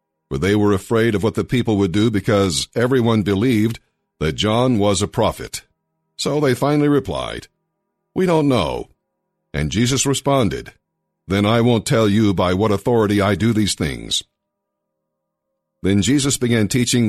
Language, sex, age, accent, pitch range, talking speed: English, male, 50-69, American, 100-125 Hz, 155 wpm